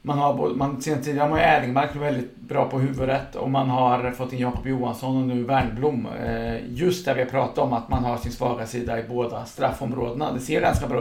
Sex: male